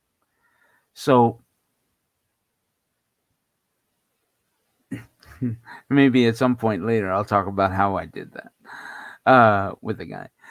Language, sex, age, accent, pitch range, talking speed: English, male, 50-69, American, 105-130 Hz, 95 wpm